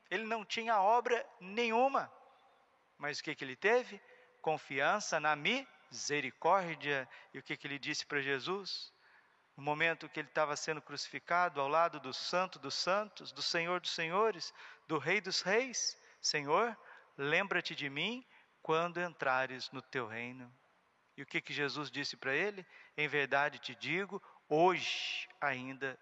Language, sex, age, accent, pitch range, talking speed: Portuguese, male, 50-69, Brazilian, 135-170 Hz, 150 wpm